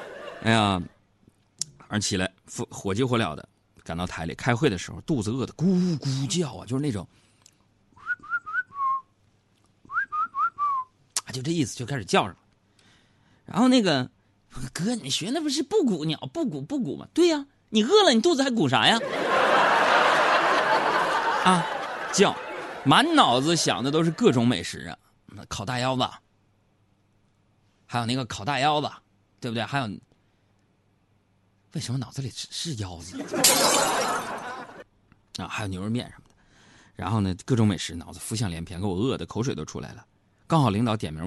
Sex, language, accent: male, Chinese, native